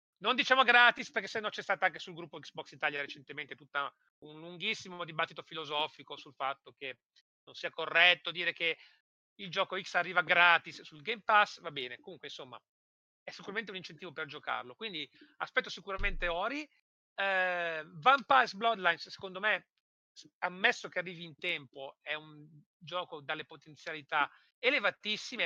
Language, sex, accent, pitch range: Italian, male, native, 150-210 Hz